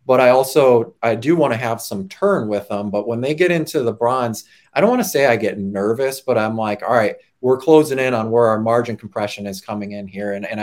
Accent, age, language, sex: American, 30-49, English, male